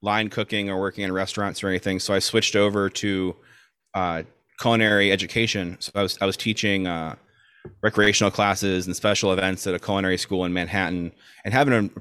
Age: 30-49